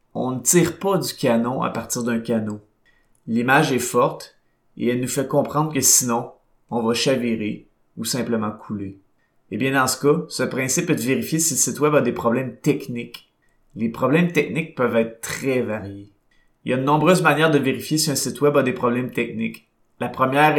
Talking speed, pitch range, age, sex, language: 200 wpm, 115-135 Hz, 30-49, male, French